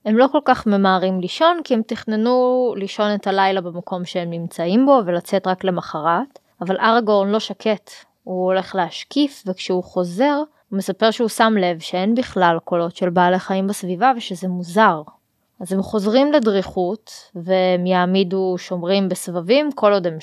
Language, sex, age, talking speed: Hebrew, female, 20-39, 155 wpm